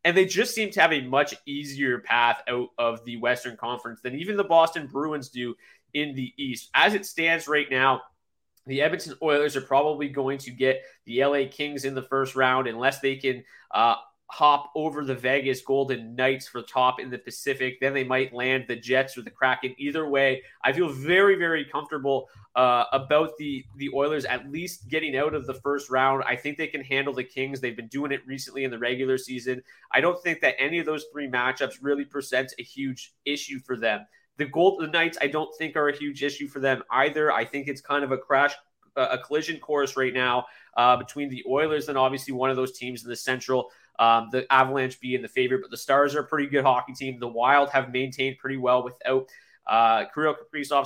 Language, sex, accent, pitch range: English, male, American, 130-150 Hz